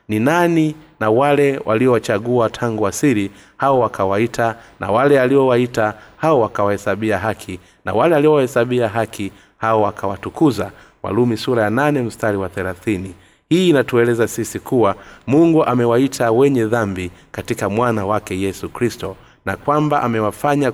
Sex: male